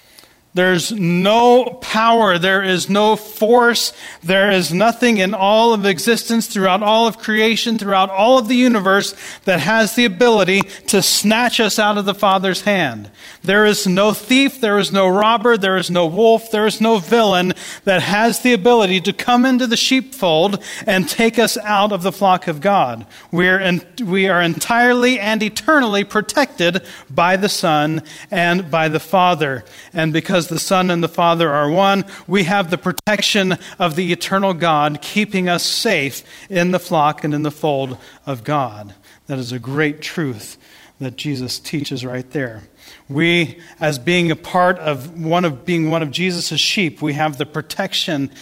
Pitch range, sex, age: 155-210 Hz, male, 40-59